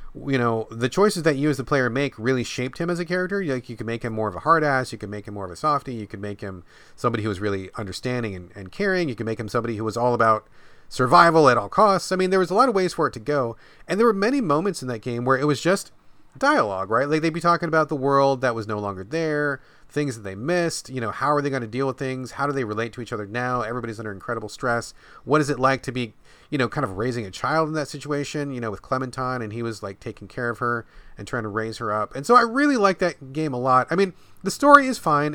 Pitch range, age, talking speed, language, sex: 115-150 Hz, 30-49, 290 wpm, English, male